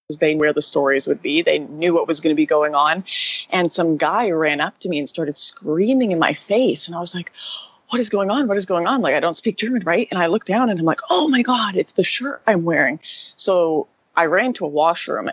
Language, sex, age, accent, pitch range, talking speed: English, female, 20-39, American, 155-185 Hz, 265 wpm